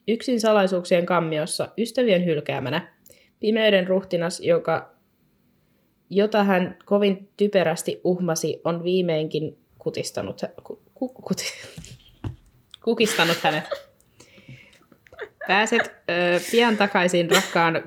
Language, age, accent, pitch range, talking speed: Finnish, 20-39, native, 160-210 Hz, 65 wpm